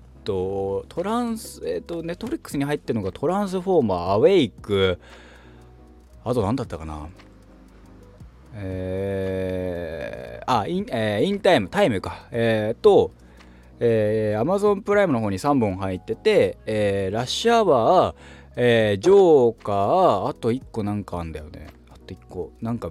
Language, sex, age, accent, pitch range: Japanese, male, 20-39, native, 85-120 Hz